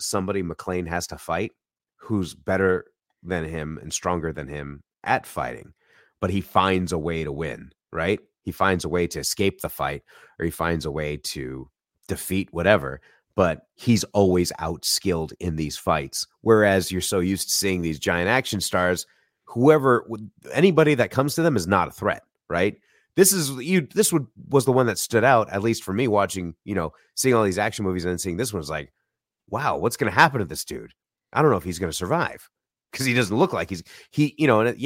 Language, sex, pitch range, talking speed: English, male, 80-110 Hz, 215 wpm